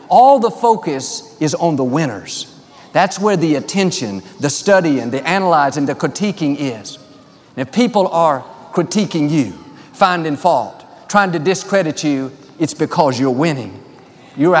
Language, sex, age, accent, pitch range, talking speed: English, male, 50-69, American, 150-210 Hz, 140 wpm